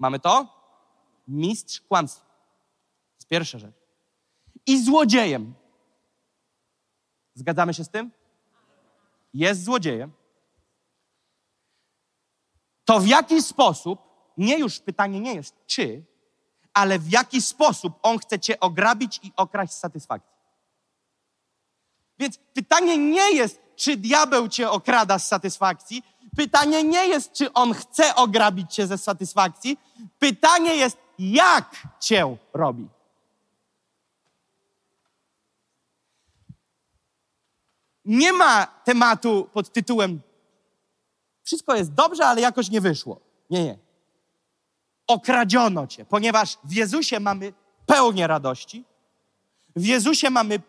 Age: 40-59